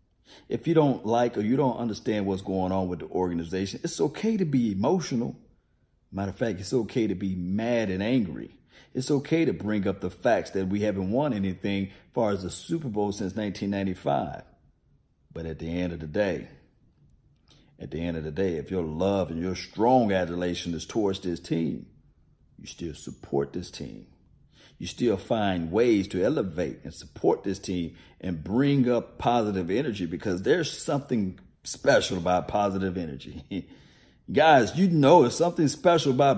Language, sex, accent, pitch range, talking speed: English, male, American, 85-115 Hz, 180 wpm